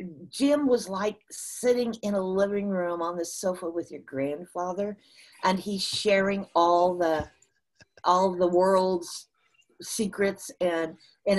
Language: English